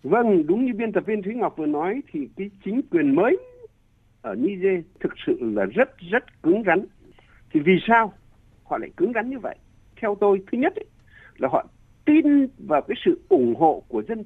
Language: Vietnamese